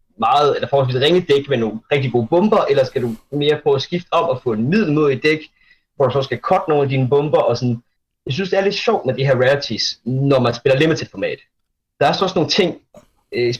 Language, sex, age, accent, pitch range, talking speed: Danish, male, 30-49, native, 120-150 Hz, 250 wpm